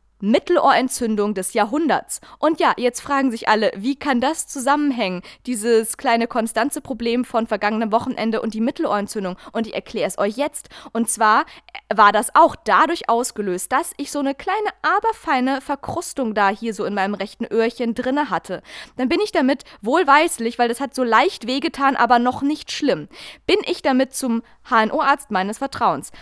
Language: German